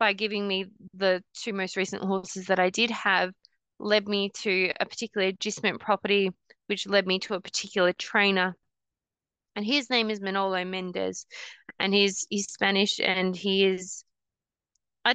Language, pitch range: English, 185-210 Hz